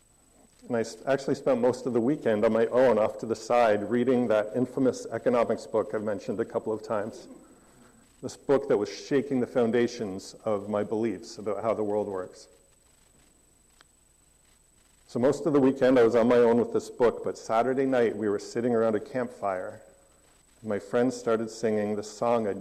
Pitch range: 105-125 Hz